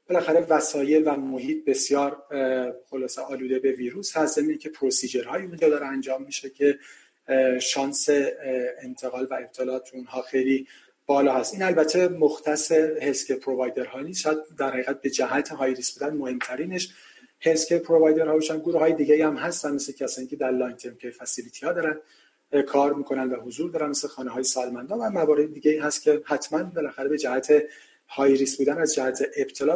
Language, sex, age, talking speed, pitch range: Persian, male, 40-59, 165 wpm, 135-160 Hz